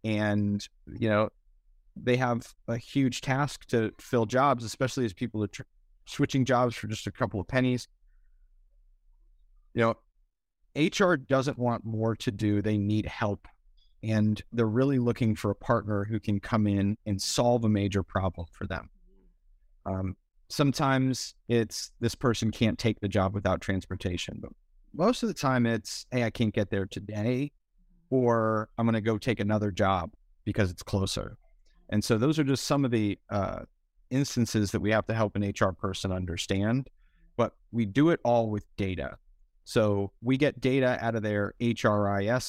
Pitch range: 100-120 Hz